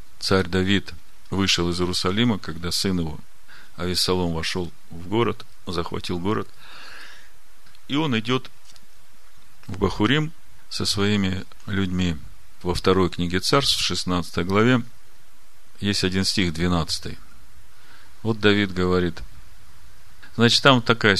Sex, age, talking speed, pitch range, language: male, 40-59, 110 wpm, 90-110 Hz, Russian